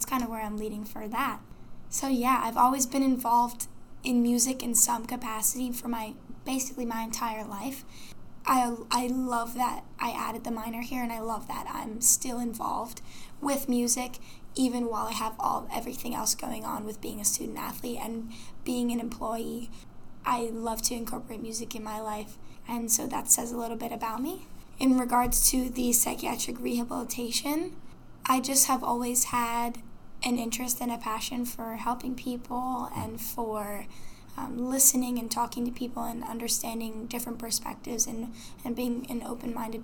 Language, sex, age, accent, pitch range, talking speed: English, female, 10-29, American, 225-250 Hz, 170 wpm